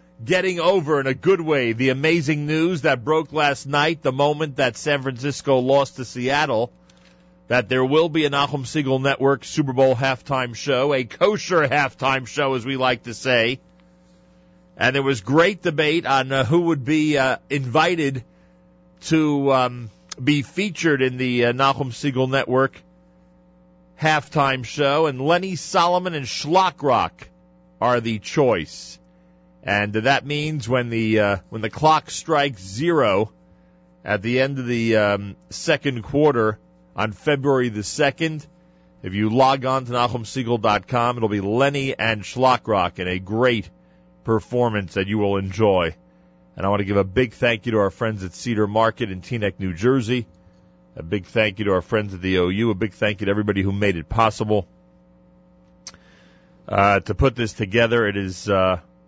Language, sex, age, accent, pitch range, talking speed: English, male, 40-59, American, 95-140 Hz, 165 wpm